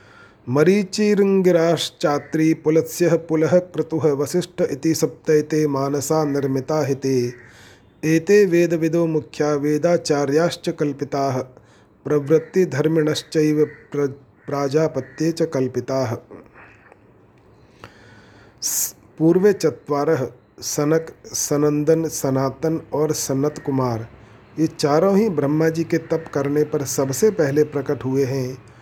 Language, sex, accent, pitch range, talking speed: Hindi, male, native, 135-160 Hz, 85 wpm